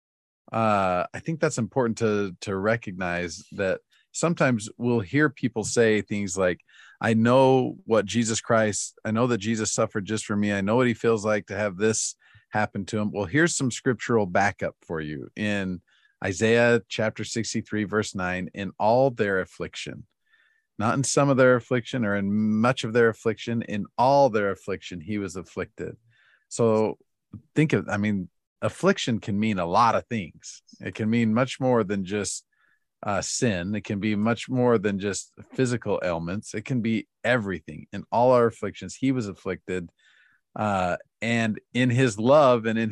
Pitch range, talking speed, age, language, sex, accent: 100-120 Hz, 175 wpm, 40-59, English, male, American